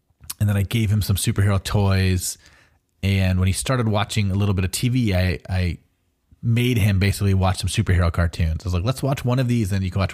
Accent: American